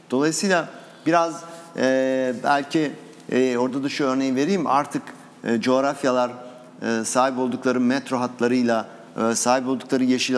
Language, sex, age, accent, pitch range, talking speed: Turkish, male, 50-69, native, 125-165 Hz, 125 wpm